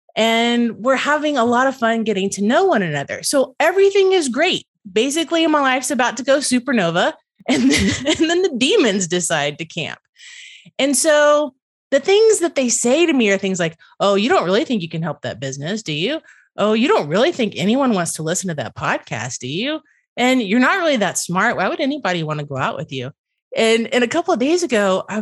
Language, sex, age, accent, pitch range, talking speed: English, female, 30-49, American, 185-280 Hz, 220 wpm